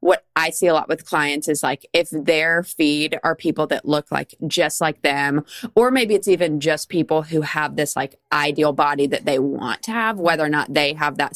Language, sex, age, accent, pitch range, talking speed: English, female, 20-39, American, 145-170 Hz, 225 wpm